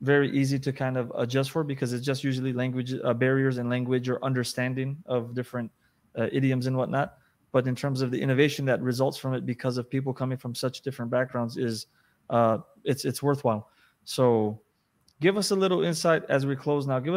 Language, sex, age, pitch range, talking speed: English, male, 20-39, 125-145 Hz, 205 wpm